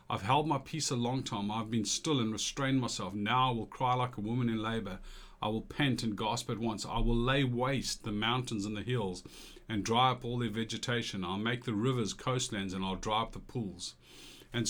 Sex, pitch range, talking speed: male, 105-130 Hz, 230 wpm